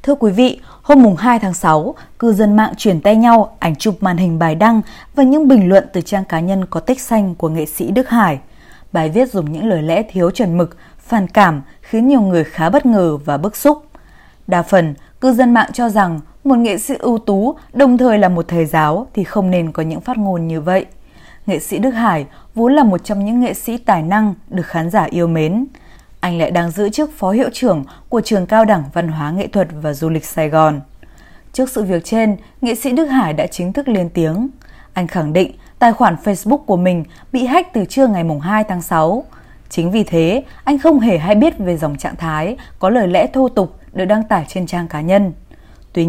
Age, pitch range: 20-39, 170-240 Hz